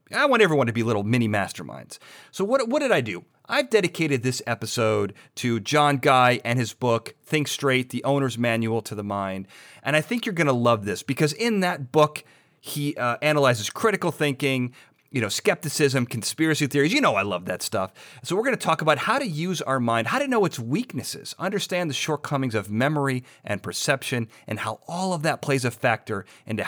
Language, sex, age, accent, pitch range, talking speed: English, male, 30-49, American, 115-150 Hz, 205 wpm